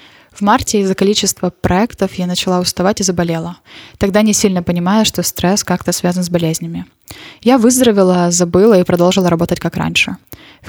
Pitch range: 180-210 Hz